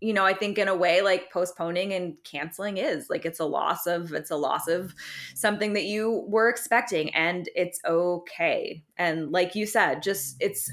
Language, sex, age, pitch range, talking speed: English, female, 20-39, 165-200 Hz, 195 wpm